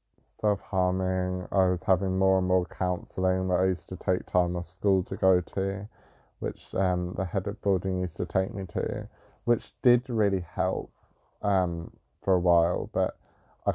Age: 20-39